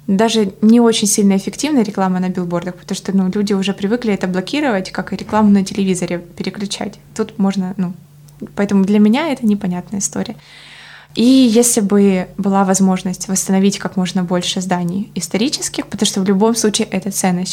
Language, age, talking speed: Ukrainian, 20-39, 170 wpm